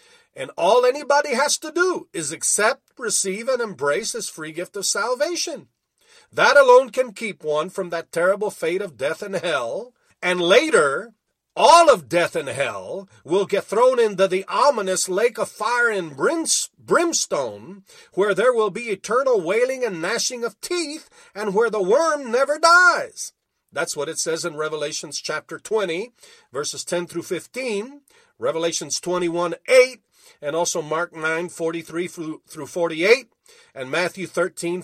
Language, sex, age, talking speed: English, male, 50-69, 150 wpm